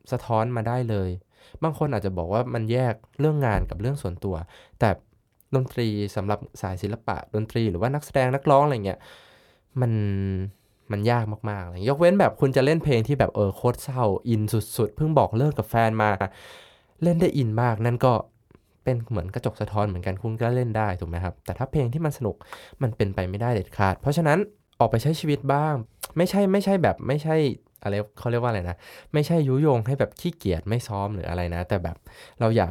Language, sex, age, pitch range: Thai, male, 20-39, 100-135 Hz